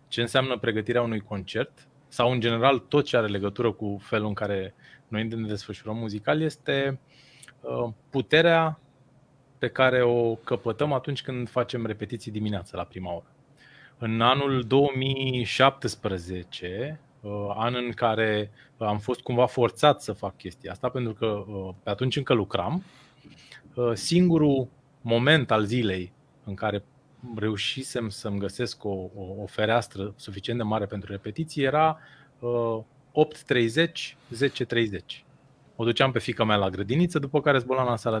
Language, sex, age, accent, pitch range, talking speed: Romanian, male, 20-39, native, 110-140 Hz, 140 wpm